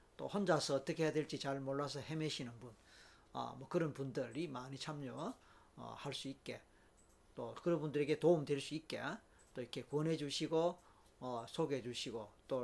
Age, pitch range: 40-59, 135-185 Hz